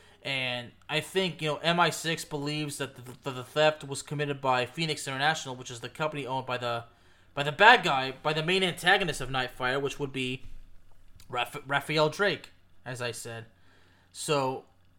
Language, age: English, 20-39